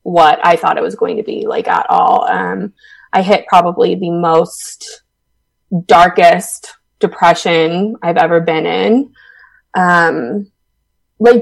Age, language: 20-39, English